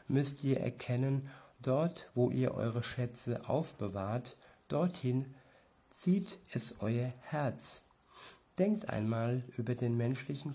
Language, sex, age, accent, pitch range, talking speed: German, male, 60-79, German, 115-145 Hz, 110 wpm